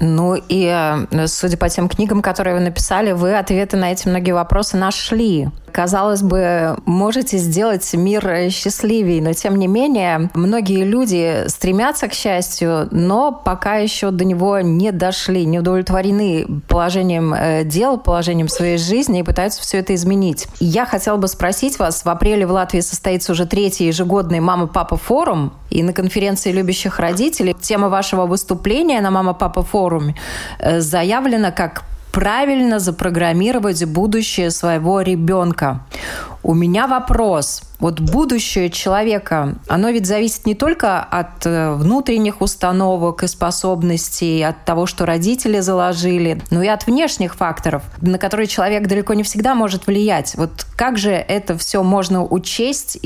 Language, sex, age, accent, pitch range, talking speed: Russian, female, 20-39, native, 175-205 Hz, 140 wpm